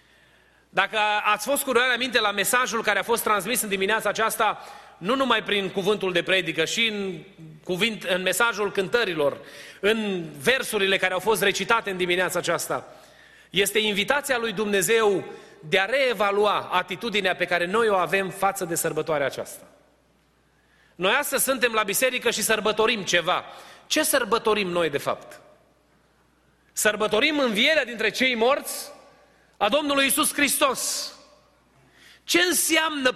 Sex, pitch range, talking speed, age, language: male, 200-260 Hz, 140 wpm, 30-49, Romanian